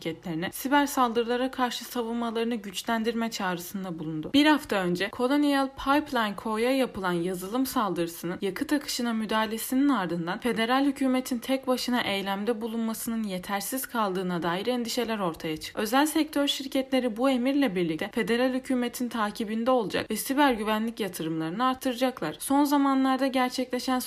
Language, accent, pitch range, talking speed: Turkish, native, 195-260 Hz, 125 wpm